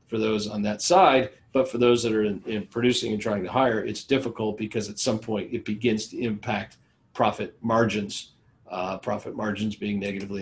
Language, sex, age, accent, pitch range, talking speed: English, male, 40-59, American, 105-125 Hz, 195 wpm